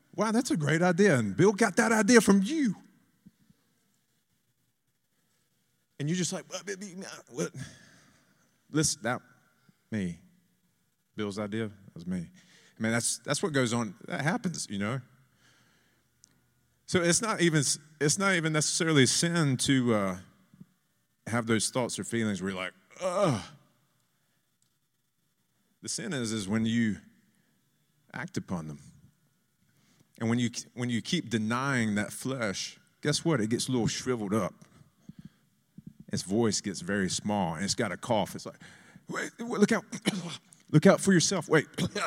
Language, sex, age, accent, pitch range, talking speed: German, male, 30-49, American, 115-180 Hz, 150 wpm